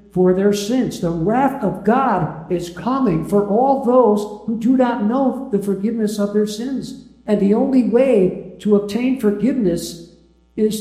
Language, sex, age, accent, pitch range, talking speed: English, male, 60-79, American, 155-220 Hz, 160 wpm